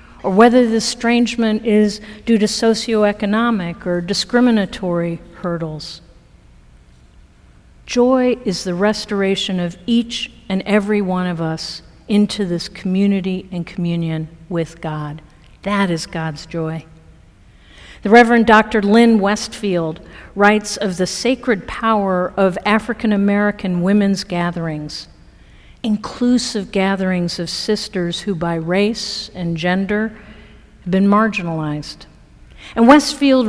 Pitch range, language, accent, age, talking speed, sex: 180-225 Hz, English, American, 50-69, 110 wpm, female